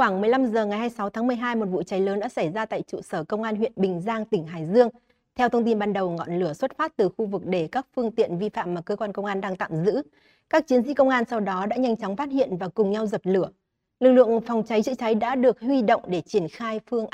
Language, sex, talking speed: Vietnamese, female, 285 wpm